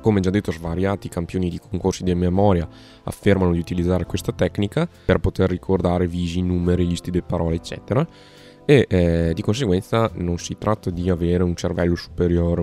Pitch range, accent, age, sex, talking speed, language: 85-105 Hz, native, 20-39, male, 165 wpm, Italian